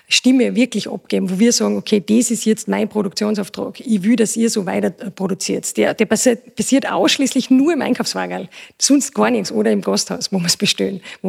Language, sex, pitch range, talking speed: German, female, 210-240 Hz, 195 wpm